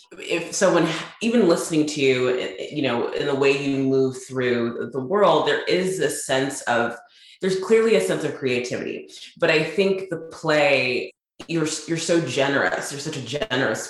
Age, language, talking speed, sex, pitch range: 20-39, English, 175 wpm, female, 120-155 Hz